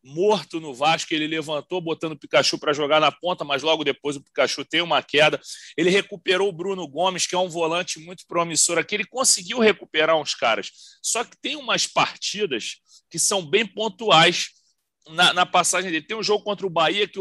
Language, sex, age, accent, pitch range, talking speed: Portuguese, male, 40-59, Brazilian, 165-210 Hz, 200 wpm